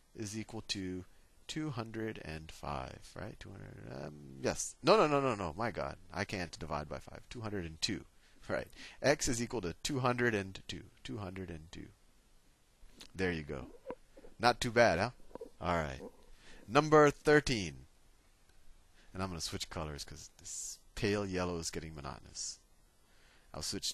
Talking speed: 135 wpm